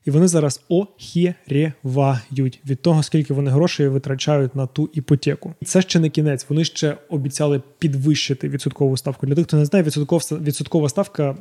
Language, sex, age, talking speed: Ukrainian, male, 20-39, 165 wpm